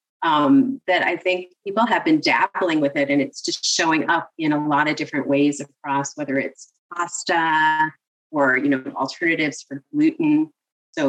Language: English